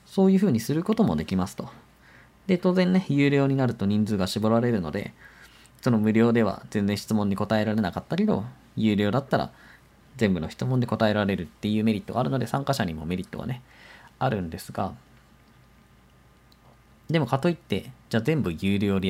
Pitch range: 100-160 Hz